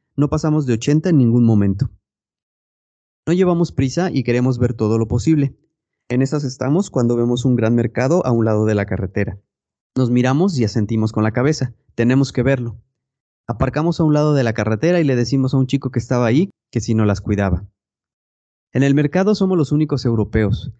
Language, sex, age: Spanish, male, 30-49